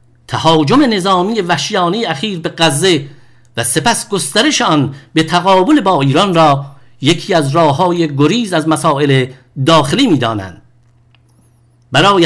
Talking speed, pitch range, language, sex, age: 120 wpm, 130-185 Hz, English, male, 50-69